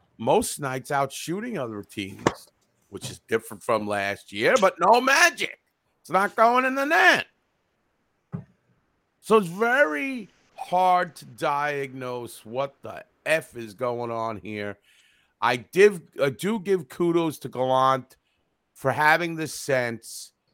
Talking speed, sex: 135 wpm, male